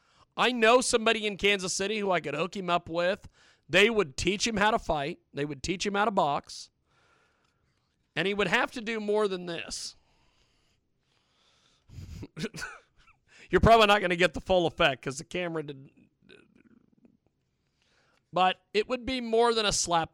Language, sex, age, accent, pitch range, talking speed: English, male, 40-59, American, 165-230 Hz, 170 wpm